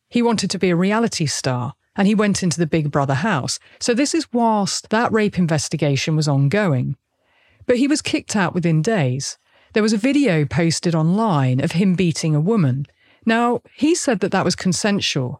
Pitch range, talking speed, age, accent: 145-215 Hz, 190 wpm, 40-59, British